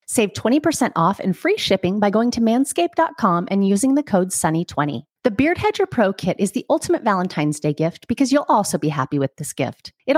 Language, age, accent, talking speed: English, 30-49, American, 205 wpm